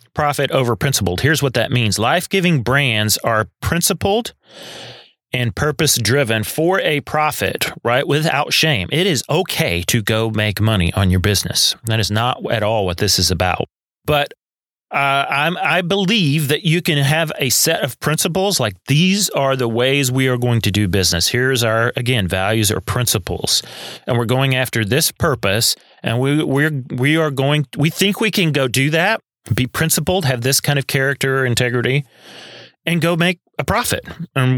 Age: 30-49